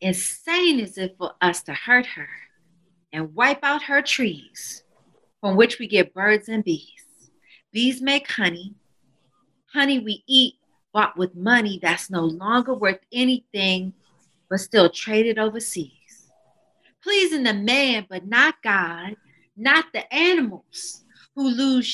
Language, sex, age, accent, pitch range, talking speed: English, female, 40-59, American, 190-285 Hz, 135 wpm